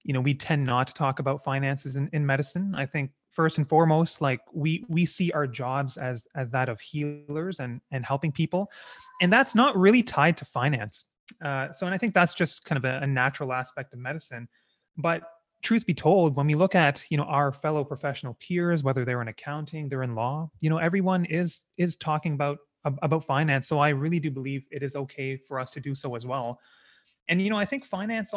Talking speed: 220 wpm